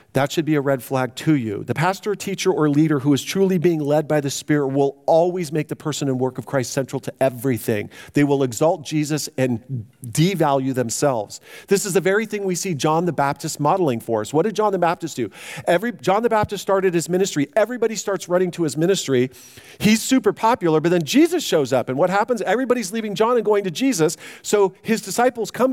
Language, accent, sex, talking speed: English, American, male, 220 wpm